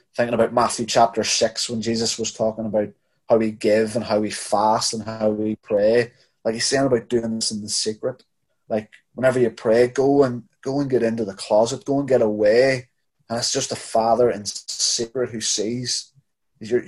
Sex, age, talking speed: male, 20-39, 200 wpm